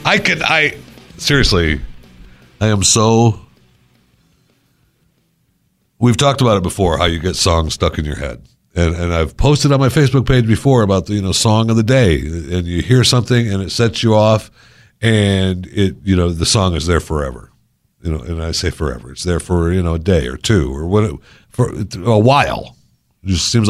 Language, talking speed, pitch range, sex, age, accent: English, 200 wpm, 85-125 Hz, male, 60-79, American